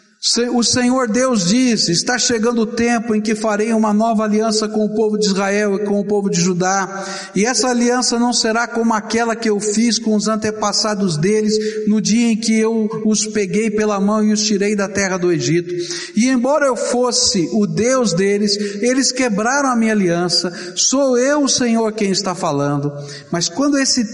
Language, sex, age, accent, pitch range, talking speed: Portuguese, male, 60-79, Brazilian, 180-230 Hz, 190 wpm